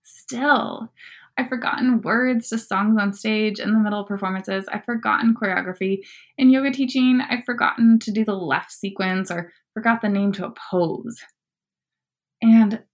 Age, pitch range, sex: 20-39, 190-235 Hz, female